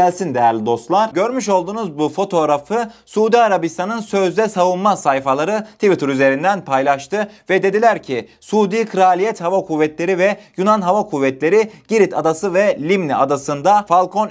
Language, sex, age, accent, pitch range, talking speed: Turkish, male, 30-49, native, 145-205 Hz, 135 wpm